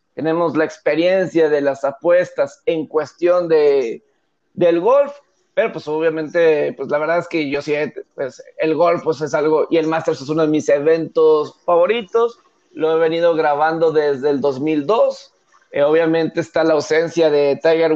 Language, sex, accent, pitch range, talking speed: Spanish, male, Mexican, 155-185 Hz, 165 wpm